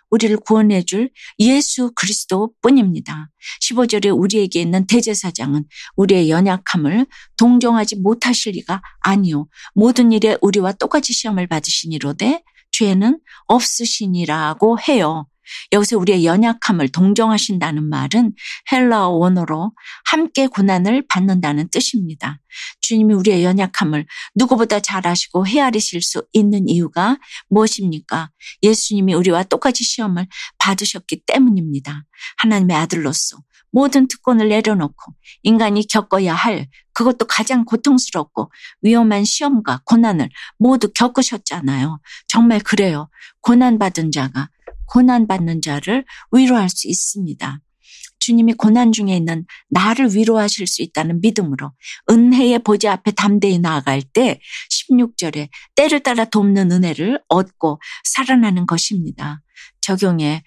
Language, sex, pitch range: Korean, female, 170-230 Hz